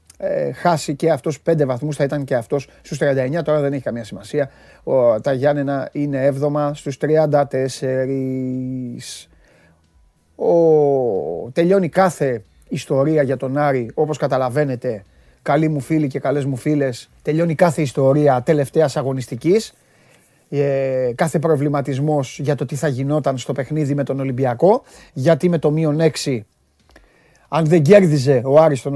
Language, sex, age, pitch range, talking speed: Greek, male, 30-49, 135-180 Hz, 145 wpm